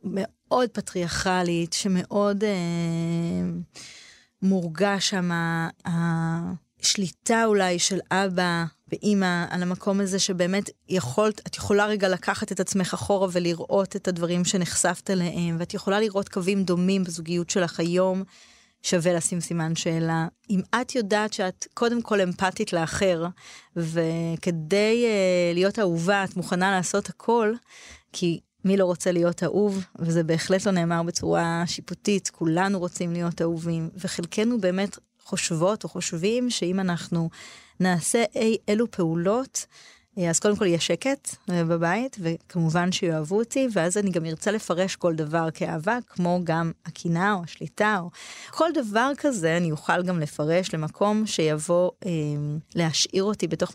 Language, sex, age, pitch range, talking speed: Hebrew, female, 20-39, 170-200 Hz, 135 wpm